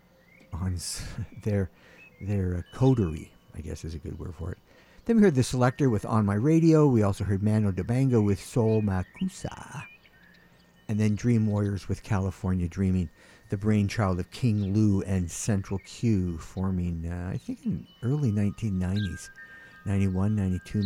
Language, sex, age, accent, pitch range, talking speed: English, male, 60-79, American, 90-125 Hz, 160 wpm